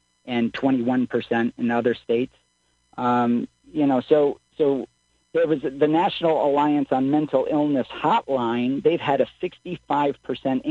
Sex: male